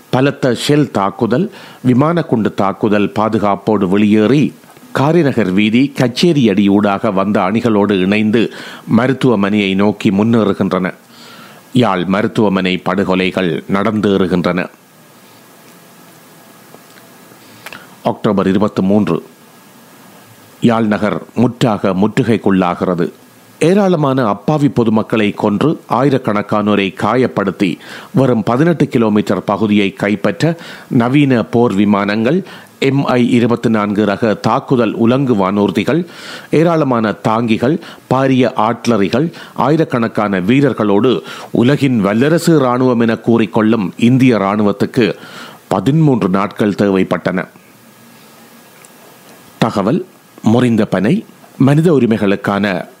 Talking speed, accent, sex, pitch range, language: 75 wpm, native, male, 100-130 Hz, Tamil